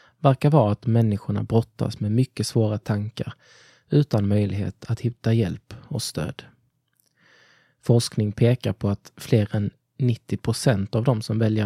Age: 20-39